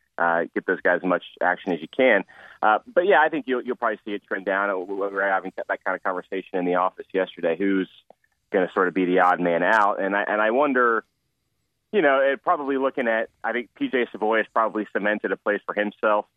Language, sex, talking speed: English, male, 240 wpm